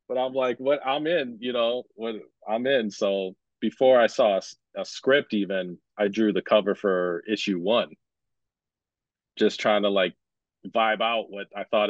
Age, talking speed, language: 30-49, 175 wpm, English